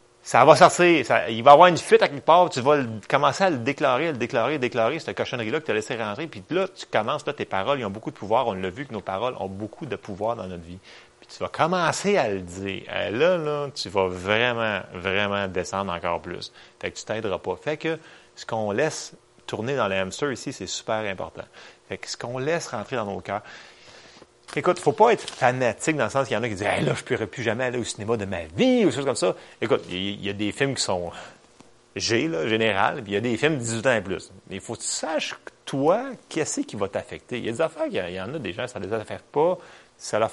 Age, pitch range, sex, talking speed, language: 30-49, 100-145 Hz, male, 275 wpm, French